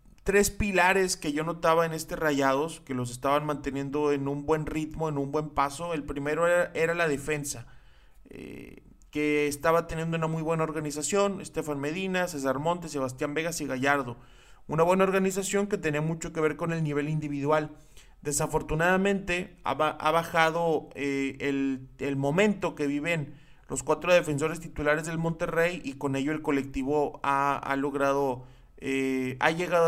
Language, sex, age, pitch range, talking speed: Spanish, male, 30-49, 140-165 Hz, 165 wpm